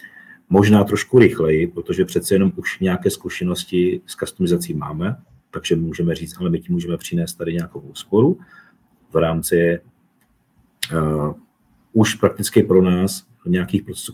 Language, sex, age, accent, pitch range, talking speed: Czech, male, 40-59, native, 85-110 Hz, 135 wpm